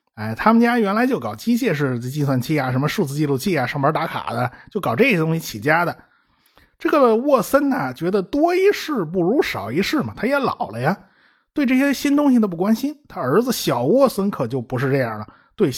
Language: Chinese